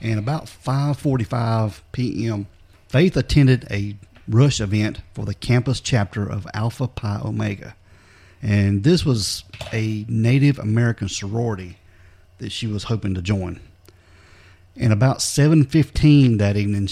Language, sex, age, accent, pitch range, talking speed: English, male, 40-59, American, 95-120 Hz, 125 wpm